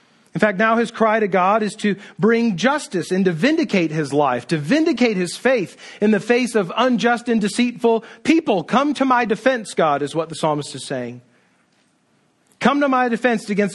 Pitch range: 155-225 Hz